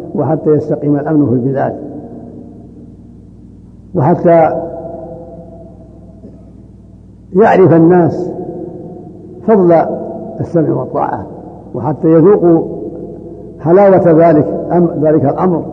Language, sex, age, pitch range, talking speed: Arabic, male, 60-79, 135-170 Hz, 70 wpm